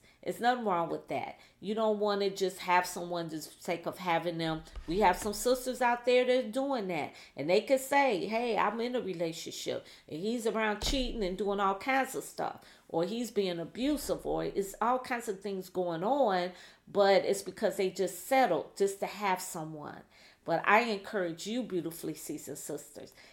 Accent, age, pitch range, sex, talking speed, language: American, 40-59, 180-250 Hz, female, 190 wpm, English